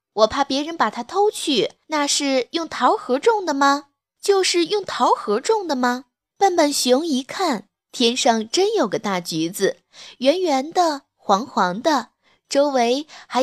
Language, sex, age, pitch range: Chinese, female, 20-39, 245-375 Hz